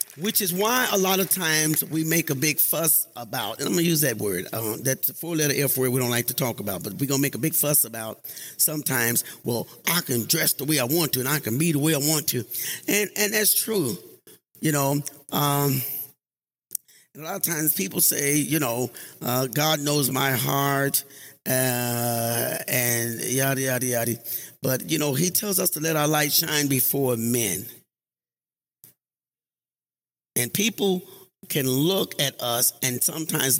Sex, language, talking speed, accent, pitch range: male, English, 190 wpm, American, 120-160 Hz